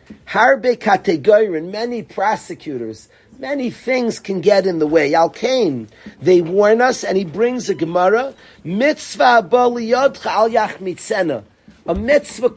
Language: English